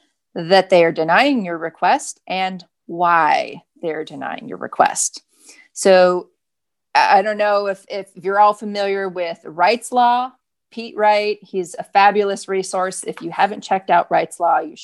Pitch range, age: 185-225 Hz, 40-59